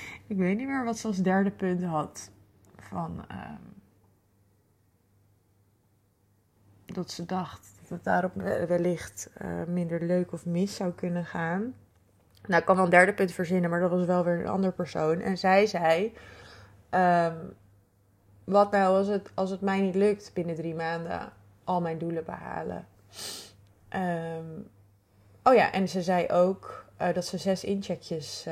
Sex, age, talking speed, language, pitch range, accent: female, 20-39, 160 wpm, Dutch, 150-185 Hz, Dutch